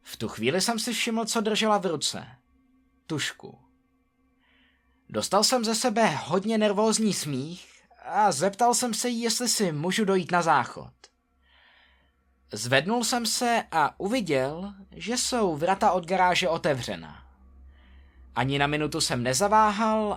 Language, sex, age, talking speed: Czech, male, 20-39, 135 wpm